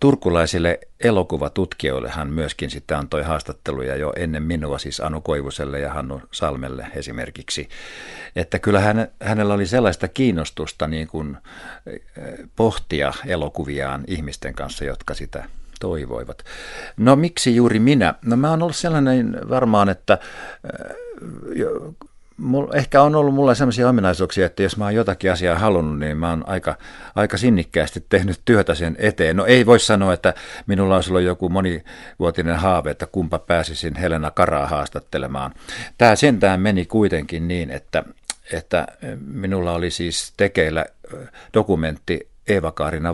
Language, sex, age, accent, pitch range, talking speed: Finnish, male, 50-69, native, 80-110 Hz, 135 wpm